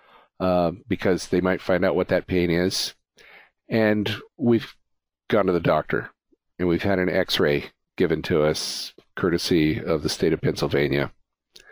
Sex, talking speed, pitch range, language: male, 155 wpm, 85-110 Hz, English